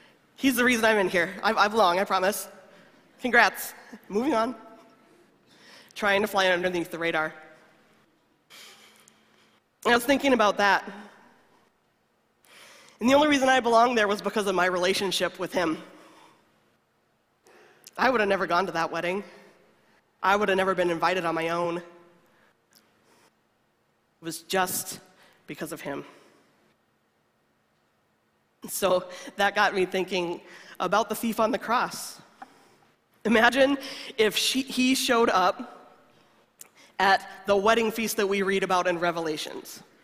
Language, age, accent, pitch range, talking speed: English, 20-39, American, 180-225 Hz, 130 wpm